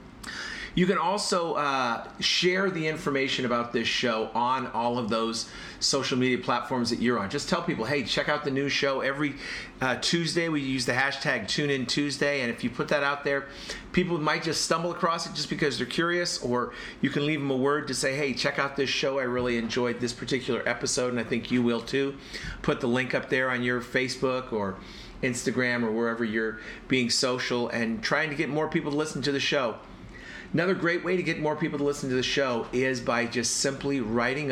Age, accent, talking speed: 40-59, American, 215 wpm